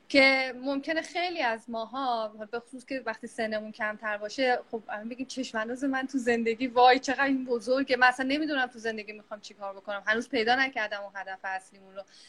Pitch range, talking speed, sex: 210-275 Hz, 185 wpm, female